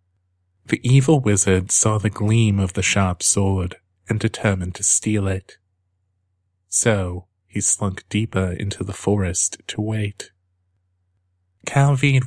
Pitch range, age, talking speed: 95-110 Hz, 30-49, 120 wpm